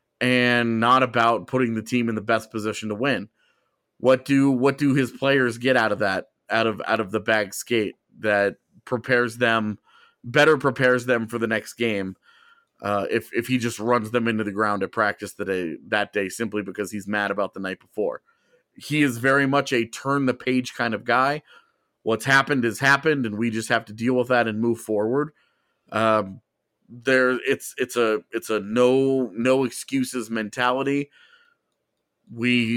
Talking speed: 185 wpm